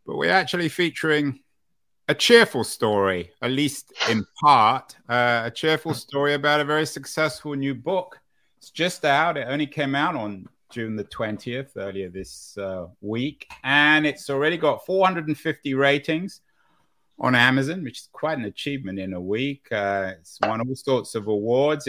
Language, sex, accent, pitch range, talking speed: English, male, British, 110-150 Hz, 160 wpm